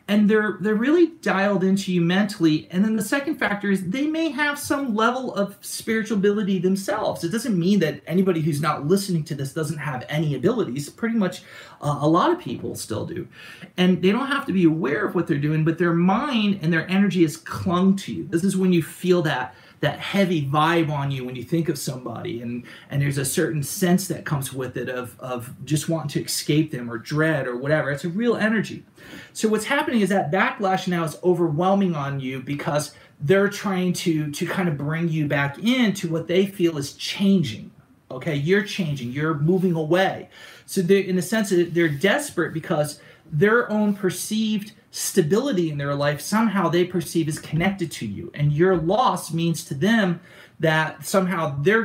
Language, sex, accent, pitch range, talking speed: English, male, American, 150-195 Hz, 200 wpm